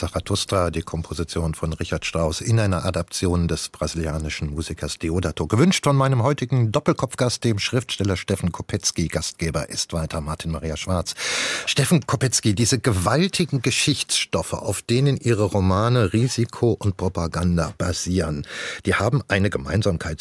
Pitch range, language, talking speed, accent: 90-120 Hz, German, 135 wpm, German